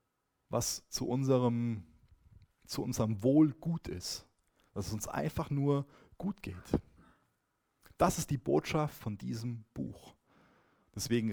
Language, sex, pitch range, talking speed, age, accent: German, male, 105-140 Hz, 115 wpm, 30-49, German